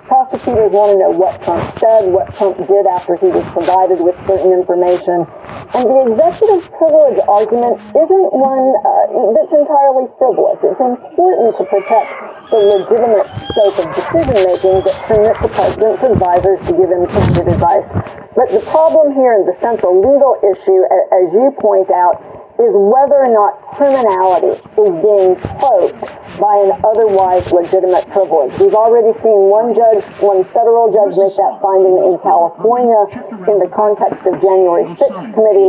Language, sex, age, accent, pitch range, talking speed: English, female, 50-69, American, 185-230 Hz, 160 wpm